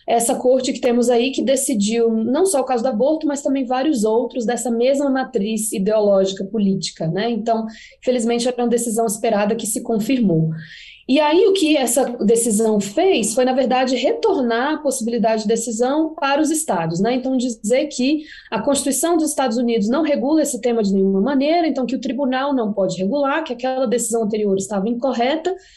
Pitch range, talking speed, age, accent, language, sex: 215-275 Hz, 185 wpm, 20-39, Brazilian, Portuguese, female